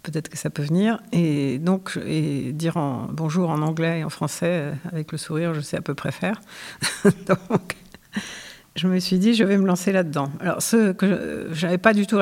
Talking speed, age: 210 wpm, 60-79